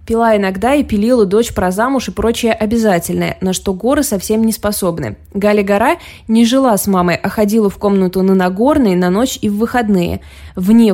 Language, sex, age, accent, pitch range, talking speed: Russian, female, 20-39, native, 185-240 Hz, 180 wpm